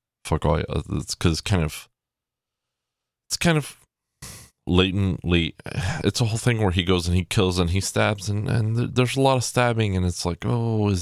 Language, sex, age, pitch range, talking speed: English, male, 20-39, 80-110 Hz, 195 wpm